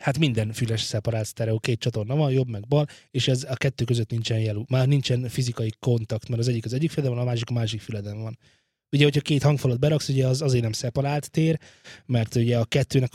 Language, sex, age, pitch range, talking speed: Hungarian, male, 20-39, 115-135 Hz, 230 wpm